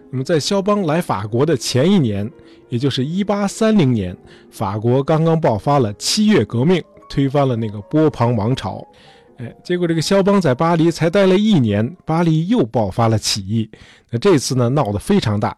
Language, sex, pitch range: Chinese, male, 115-160 Hz